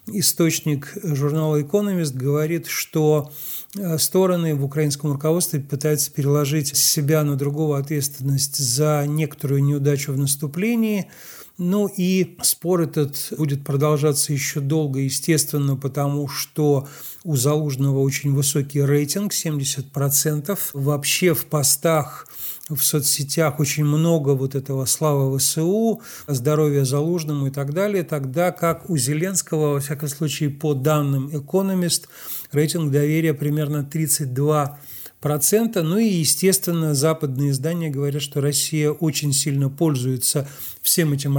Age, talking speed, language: 40-59, 115 wpm, Russian